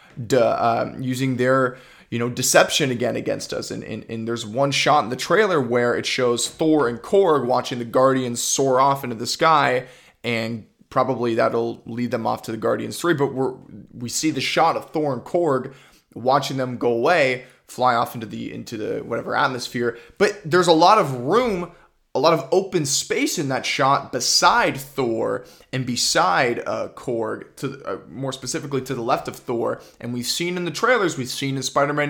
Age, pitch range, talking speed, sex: 20-39, 120-150 Hz, 195 wpm, male